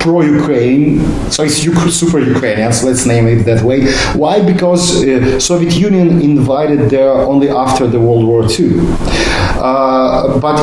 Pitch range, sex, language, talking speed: 125-155 Hz, male, English, 140 wpm